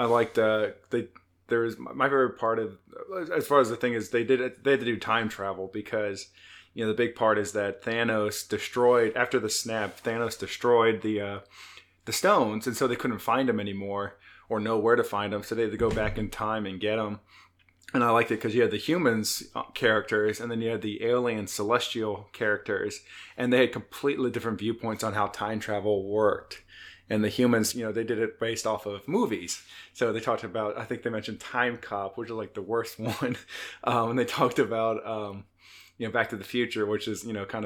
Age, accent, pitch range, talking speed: 20-39, American, 105-120 Hz, 225 wpm